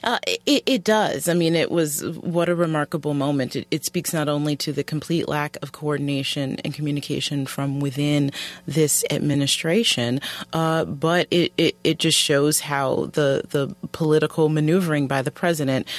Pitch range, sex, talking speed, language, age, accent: 140-165 Hz, female, 160 wpm, English, 30-49, American